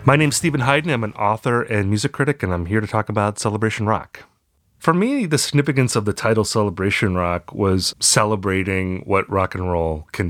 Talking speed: 200 wpm